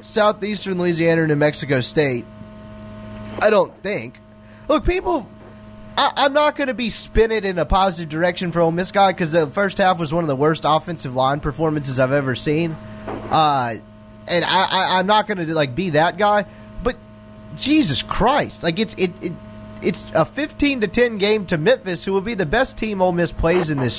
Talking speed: 200 wpm